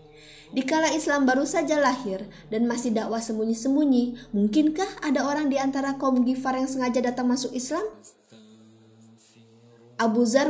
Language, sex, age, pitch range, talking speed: Indonesian, female, 20-39, 200-255 Hz, 130 wpm